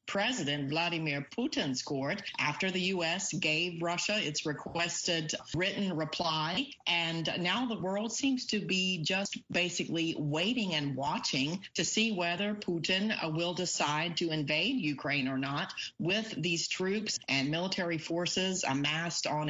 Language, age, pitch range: English, 40-59, 155-190 Hz